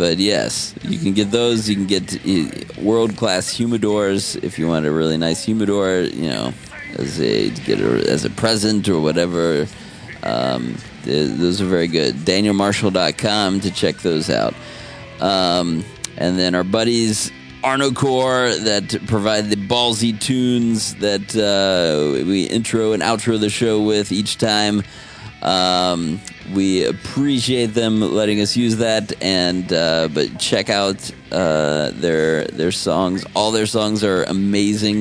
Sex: male